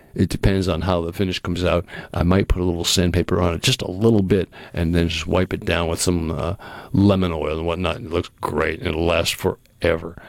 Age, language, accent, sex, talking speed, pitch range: 60-79, English, American, male, 240 wpm, 85-110 Hz